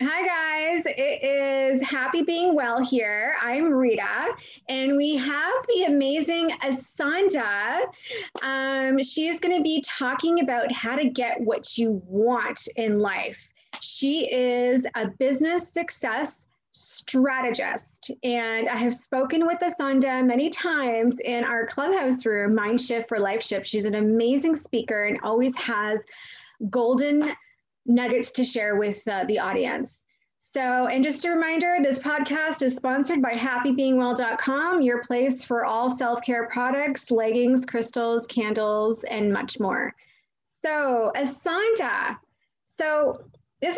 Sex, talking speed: female, 130 wpm